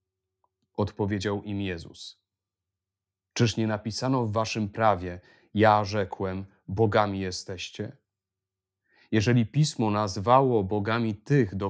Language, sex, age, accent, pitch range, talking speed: Polish, male, 30-49, native, 95-115 Hz, 95 wpm